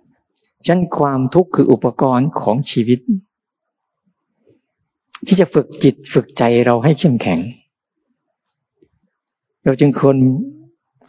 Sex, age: male, 60-79